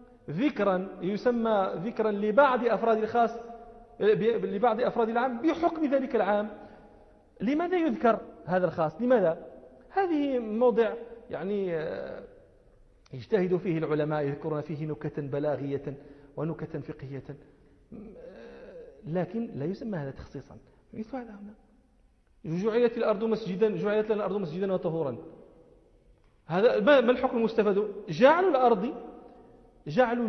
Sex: male